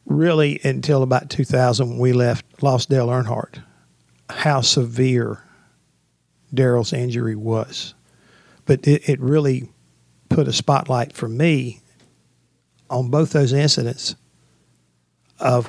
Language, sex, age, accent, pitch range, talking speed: English, male, 50-69, American, 120-145 Hz, 110 wpm